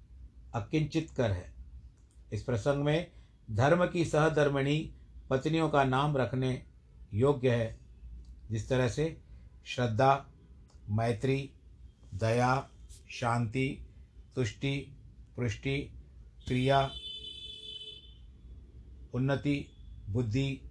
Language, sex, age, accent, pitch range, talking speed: Hindi, male, 60-79, native, 110-145 Hz, 80 wpm